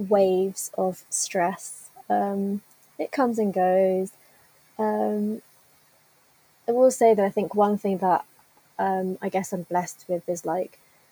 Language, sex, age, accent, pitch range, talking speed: English, female, 20-39, British, 180-210 Hz, 140 wpm